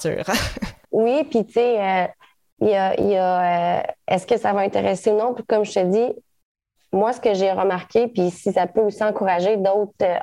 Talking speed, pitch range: 200 wpm, 175-210 Hz